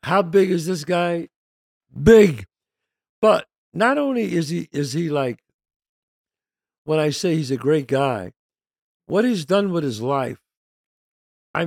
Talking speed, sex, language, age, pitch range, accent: 145 wpm, male, English, 60-79, 140-200 Hz, American